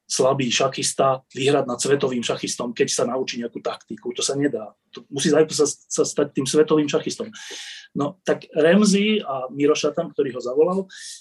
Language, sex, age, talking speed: Slovak, male, 30-49, 155 wpm